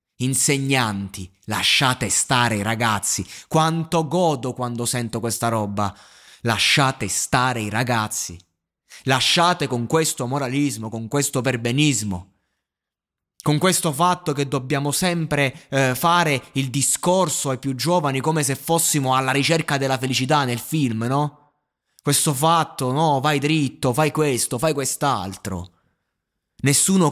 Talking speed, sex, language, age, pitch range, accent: 120 wpm, male, Italian, 20-39, 110-150 Hz, native